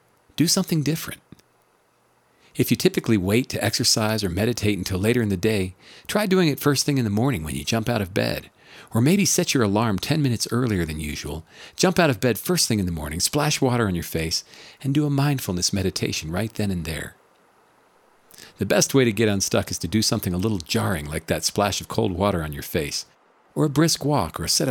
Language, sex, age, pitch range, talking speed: English, male, 50-69, 95-135 Hz, 225 wpm